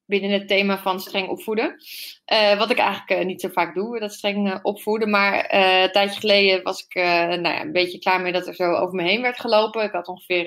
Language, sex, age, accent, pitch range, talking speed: Dutch, female, 20-39, Dutch, 185-245 Hz, 250 wpm